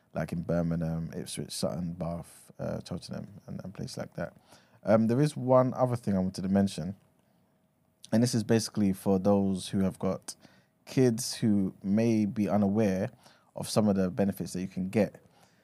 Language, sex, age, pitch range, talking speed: English, male, 20-39, 95-110 Hz, 175 wpm